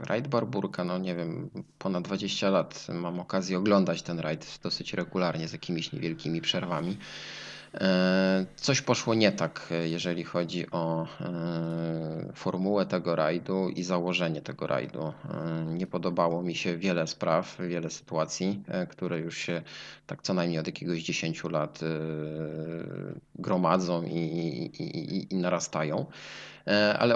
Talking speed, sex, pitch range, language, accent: 130 wpm, male, 85-95 Hz, Polish, native